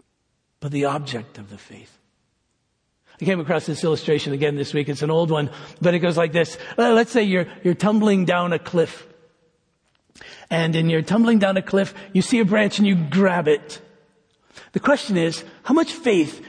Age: 50-69